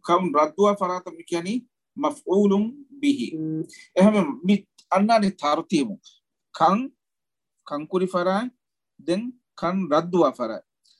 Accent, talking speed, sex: Indian, 85 wpm, male